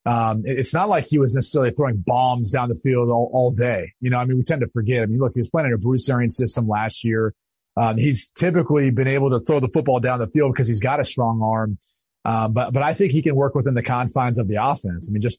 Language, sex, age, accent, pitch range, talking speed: English, male, 30-49, American, 120-145 Hz, 275 wpm